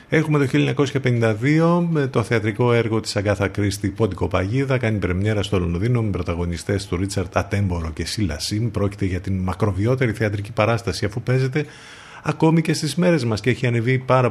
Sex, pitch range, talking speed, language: male, 95-125 Hz, 170 wpm, Greek